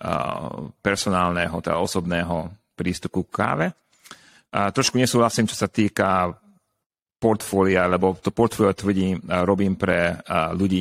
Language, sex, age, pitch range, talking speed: Slovak, male, 40-59, 95-110 Hz, 110 wpm